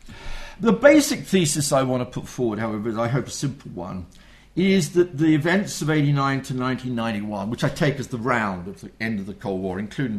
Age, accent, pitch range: 50-69, British, 120-170 Hz